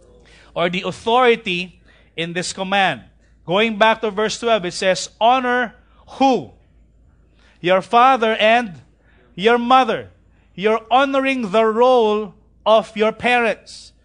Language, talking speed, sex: English, 115 wpm, male